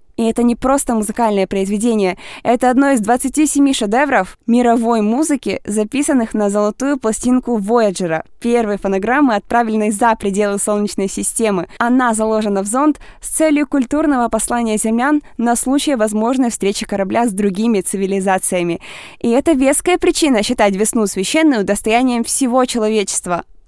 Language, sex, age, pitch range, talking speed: Russian, female, 20-39, 205-265 Hz, 135 wpm